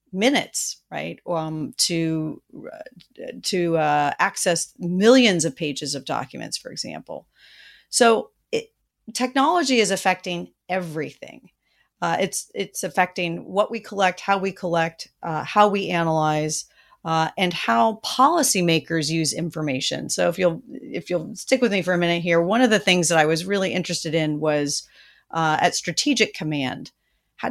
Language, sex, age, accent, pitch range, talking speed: English, female, 40-59, American, 160-195 Hz, 145 wpm